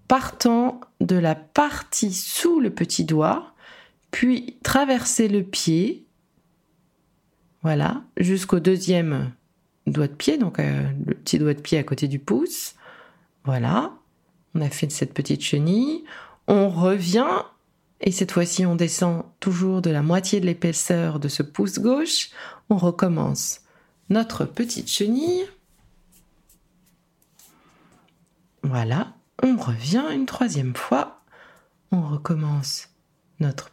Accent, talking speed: French, 120 wpm